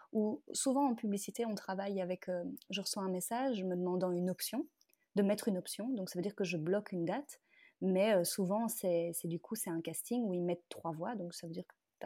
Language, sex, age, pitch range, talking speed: French, female, 30-49, 180-230 Hz, 250 wpm